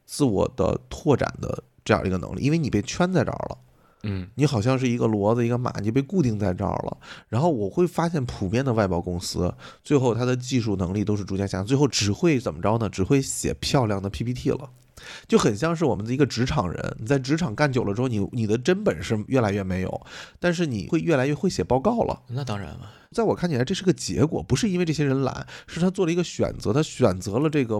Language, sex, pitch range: Chinese, male, 105-155 Hz